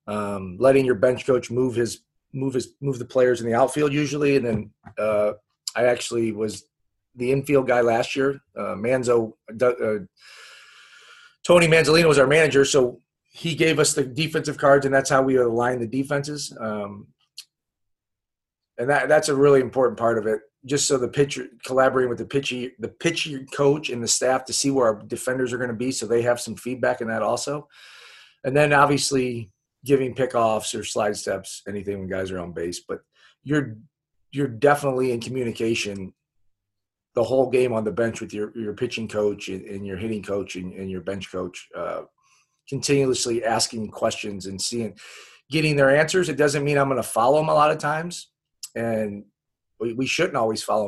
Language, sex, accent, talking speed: English, male, American, 190 wpm